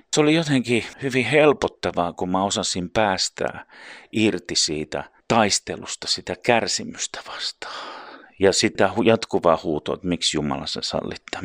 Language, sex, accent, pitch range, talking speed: Finnish, male, native, 90-120 Hz, 125 wpm